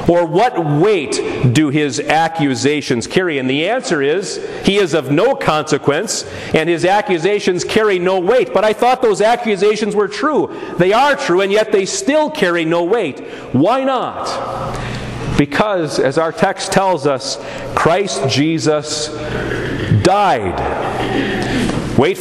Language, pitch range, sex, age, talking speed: English, 125-195 Hz, male, 40-59, 140 wpm